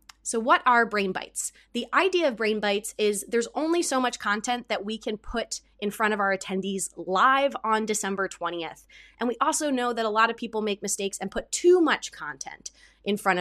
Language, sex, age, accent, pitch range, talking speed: English, female, 20-39, American, 205-255 Hz, 210 wpm